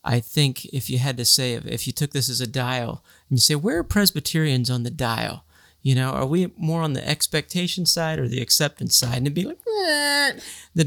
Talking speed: 230 wpm